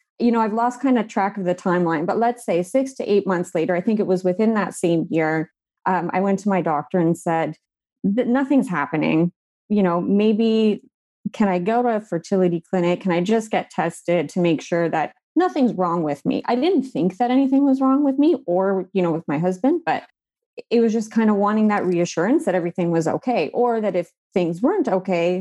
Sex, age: female, 30-49